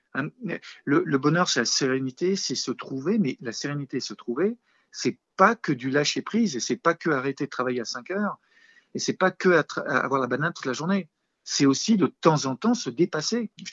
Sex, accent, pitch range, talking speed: male, French, 130-175 Hz, 225 wpm